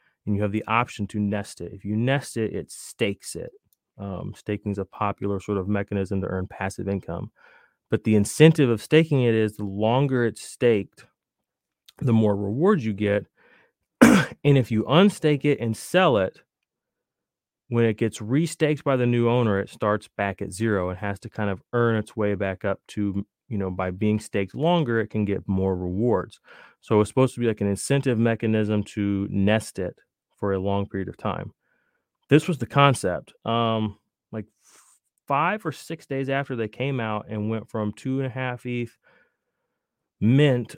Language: English